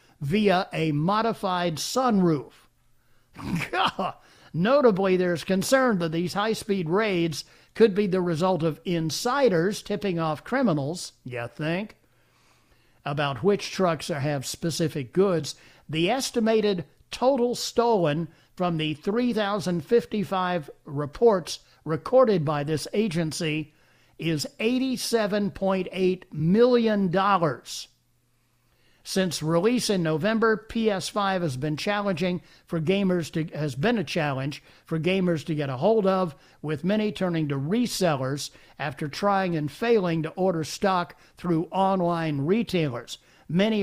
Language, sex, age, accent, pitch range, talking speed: English, male, 60-79, American, 155-205 Hz, 110 wpm